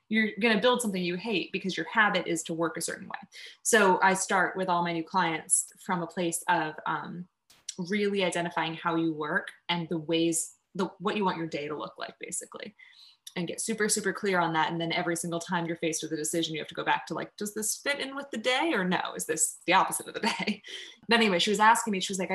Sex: female